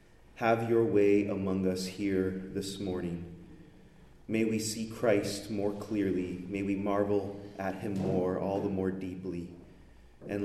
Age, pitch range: 30-49, 100-140 Hz